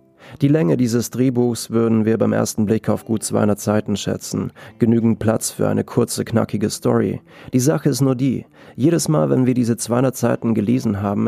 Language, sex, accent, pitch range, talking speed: German, male, German, 115-135 Hz, 185 wpm